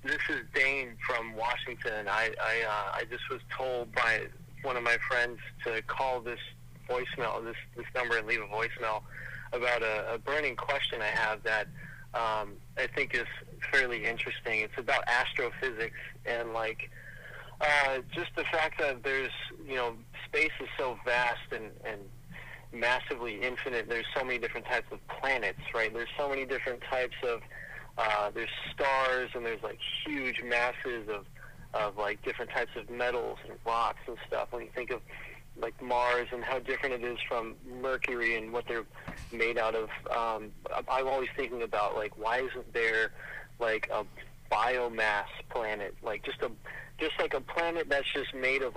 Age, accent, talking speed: 30-49, American, 170 wpm